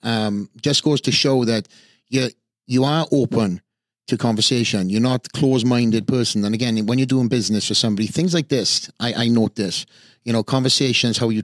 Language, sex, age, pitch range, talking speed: English, male, 30-49, 105-120 Hz, 200 wpm